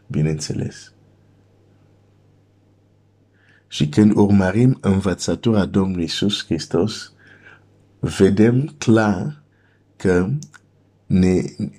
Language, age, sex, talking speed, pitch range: Romanian, 50-69, male, 65 wpm, 95-105 Hz